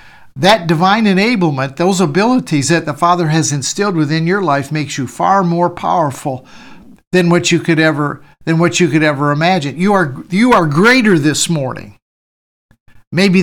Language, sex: English, male